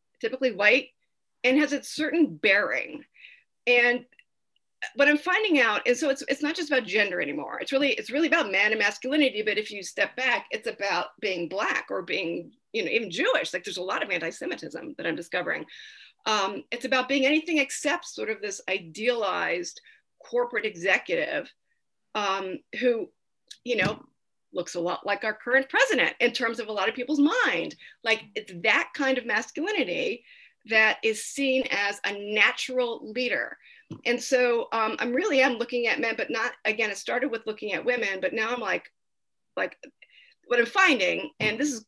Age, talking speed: 40-59, 180 wpm